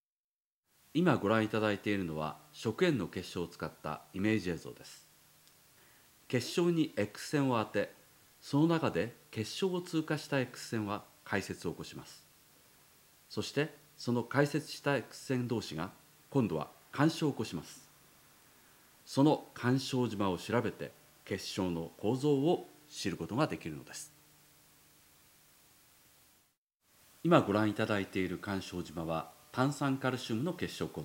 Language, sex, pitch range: Japanese, male, 95-140 Hz